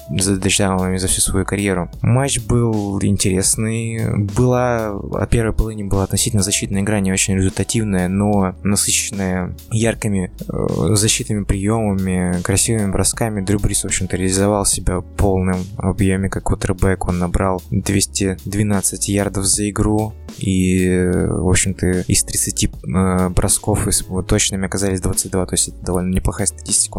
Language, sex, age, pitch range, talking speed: Russian, male, 20-39, 95-110 Hz, 125 wpm